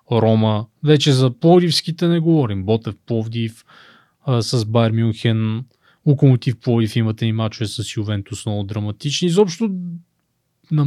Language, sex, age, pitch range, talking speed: Bulgarian, male, 20-39, 110-155 Hz, 125 wpm